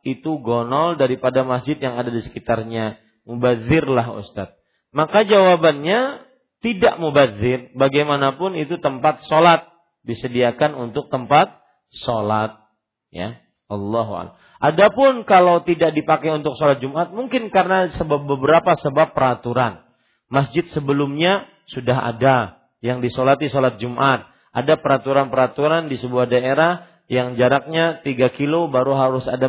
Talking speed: 115 wpm